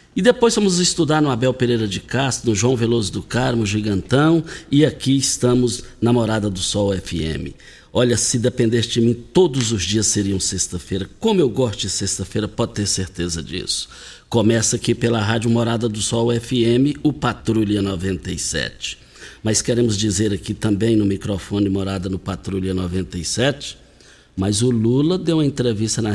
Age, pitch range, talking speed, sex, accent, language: 60-79, 110-160 Hz, 165 wpm, male, Brazilian, Portuguese